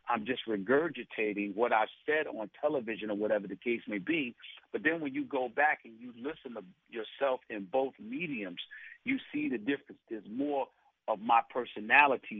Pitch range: 100-140 Hz